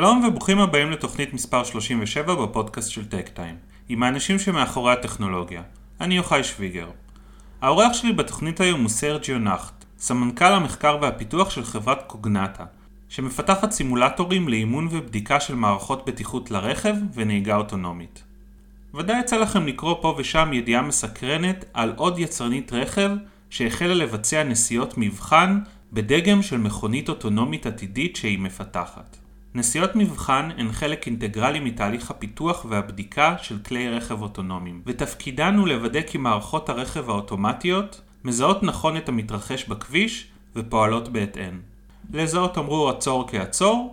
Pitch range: 110-170 Hz